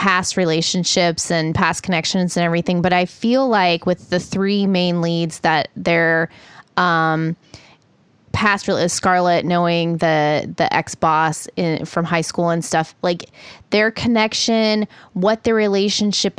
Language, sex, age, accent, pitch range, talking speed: English, female, 20-39, American, 165-195 Hz, 145 wpm